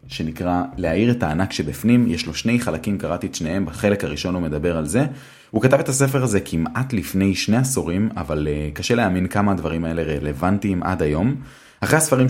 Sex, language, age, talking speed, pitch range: male, Hebrew, 30-49, 185 wpm, 80-110 Hz